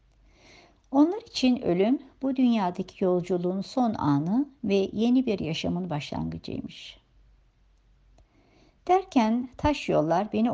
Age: 60-79